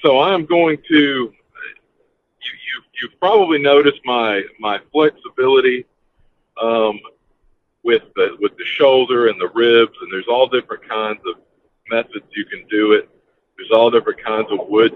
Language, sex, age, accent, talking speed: English, male, 50-69, American, 155 wpm